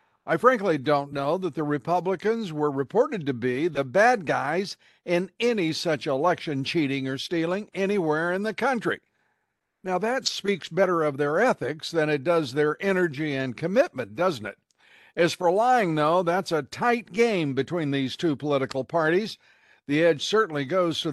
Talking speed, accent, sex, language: 170 wpm, American, male, English